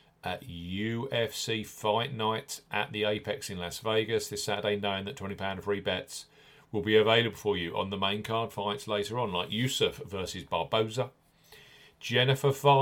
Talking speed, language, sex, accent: 160 wpm, English, male, British